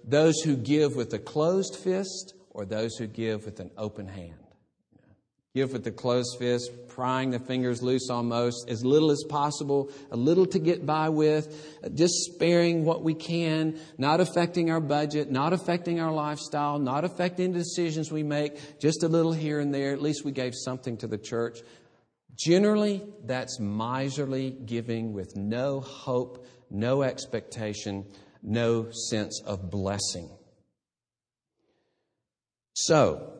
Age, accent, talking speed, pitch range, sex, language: 50-69, American, 145 wpm, 120-160 Hz, male, English